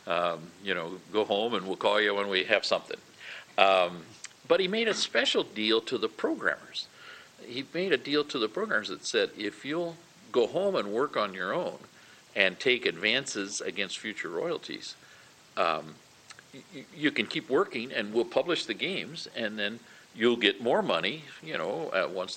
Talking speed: 175 wpm